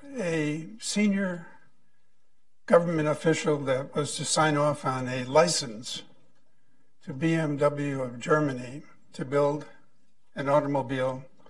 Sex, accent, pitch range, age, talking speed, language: male, American, 145-190 Hz, 60-79, 105 wpm, English